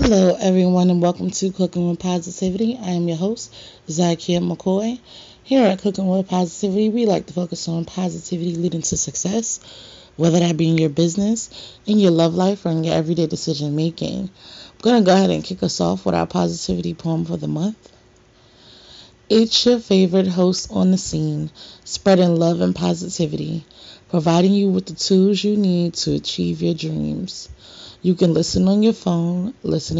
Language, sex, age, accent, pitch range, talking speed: English, female, 30-49, American, 155-185 Hz, 175 wpm